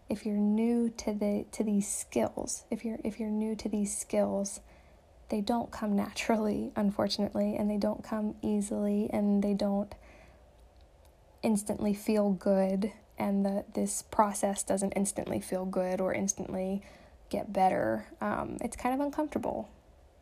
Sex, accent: female, American